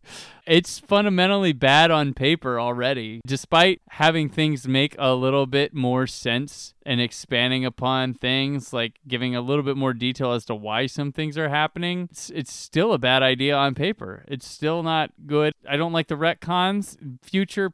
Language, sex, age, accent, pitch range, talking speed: English, male, 20-39, American, 135-180 Hz, 175 wpm